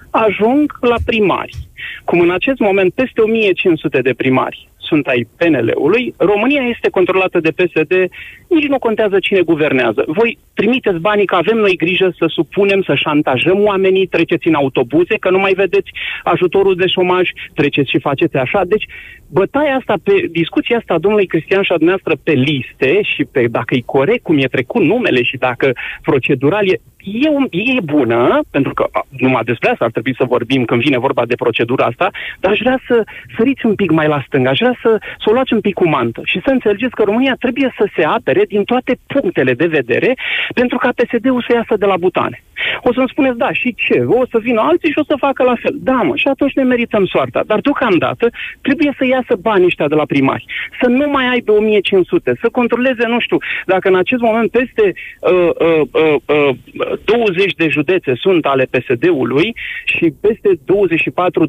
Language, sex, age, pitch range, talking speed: Romanian, male, 30-49, 175-255 Hz, 195 wpm